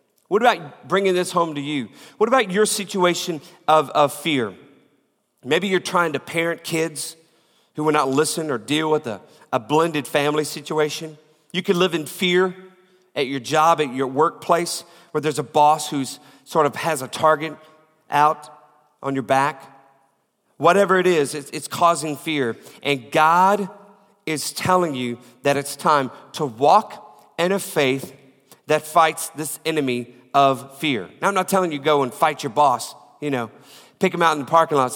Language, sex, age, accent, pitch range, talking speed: English, male, 40-59, American, 145-175 Hz, 175 wpm